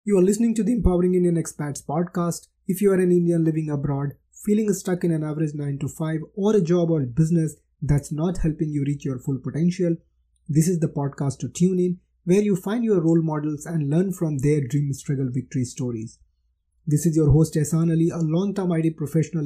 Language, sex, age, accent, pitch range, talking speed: English, male, 20-39, Indian, 145-180 Hz, 215 wpm